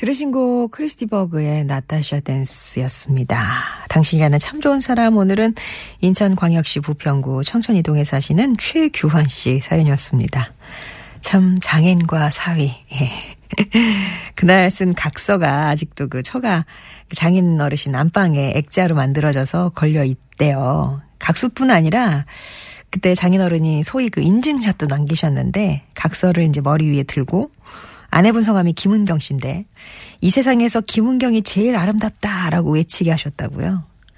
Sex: female